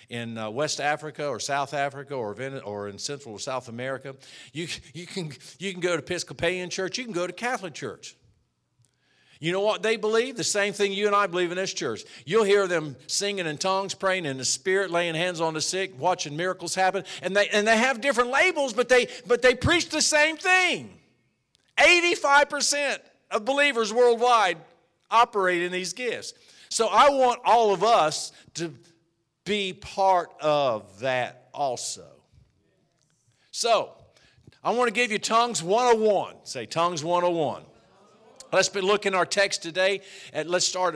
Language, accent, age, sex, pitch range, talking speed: English, American, 50-69, male, 165-215 Hz, 175 wpm